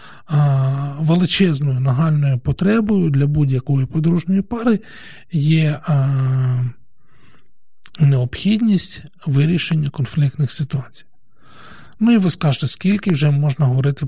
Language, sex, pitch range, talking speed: Ukrainian, male, 135-165 Hz, 85 wpm